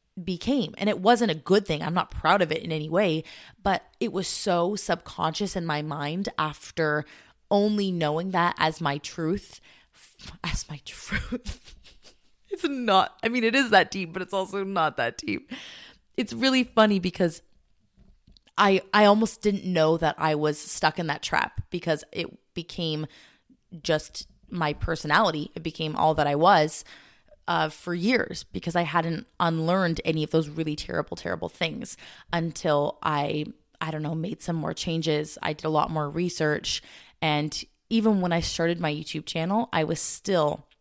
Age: 20-39